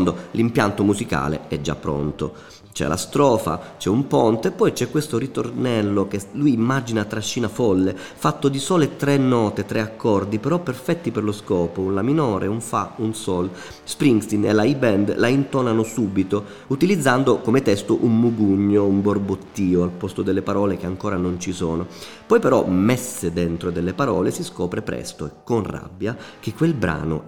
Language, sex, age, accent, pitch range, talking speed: Italian, male, 30-49, native, 95-125 Hz, 175 wpm